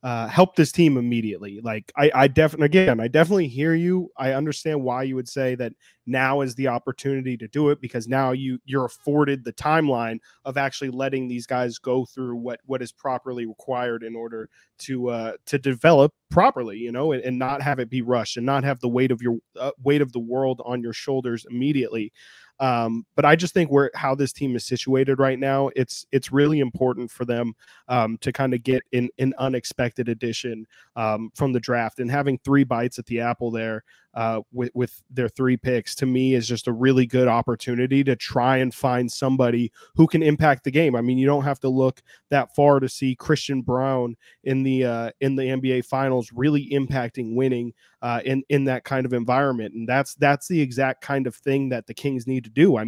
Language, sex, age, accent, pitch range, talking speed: English, male, 20-39, American, 120-140 Hz, 215 wpm